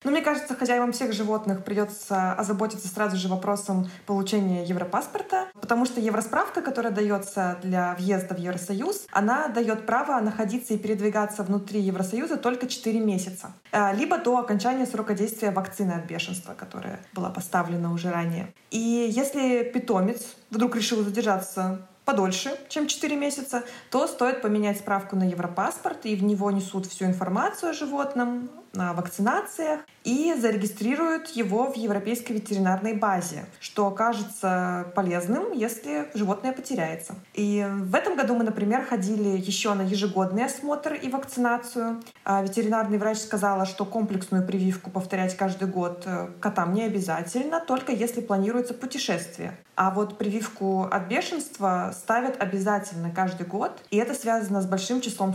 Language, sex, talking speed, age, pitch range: Russian, female, 140 wpm, 20-39, 190-245 Hz